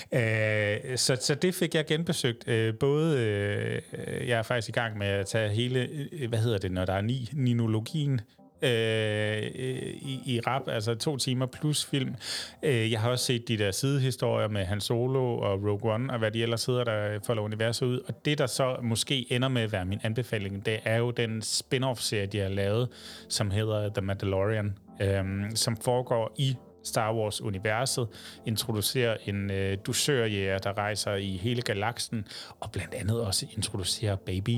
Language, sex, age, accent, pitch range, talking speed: Danish, male, 30-49, native, 105-125 Hz, 180 wpm